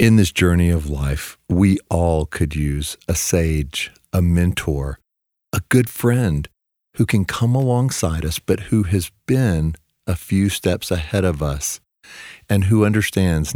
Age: 50-69